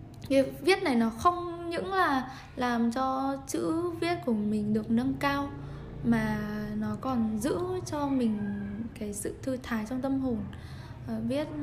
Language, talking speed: Vietnamese, 150 wpm